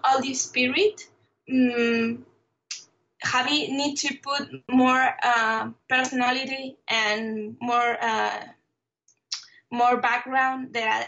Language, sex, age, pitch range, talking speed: English, female, 20-39, 225-255 Hz, 90 wpm